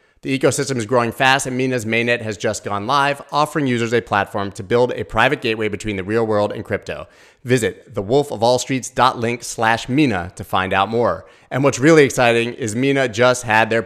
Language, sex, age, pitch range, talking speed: English, male, 30-49, 110-130 Hz, 180 wpm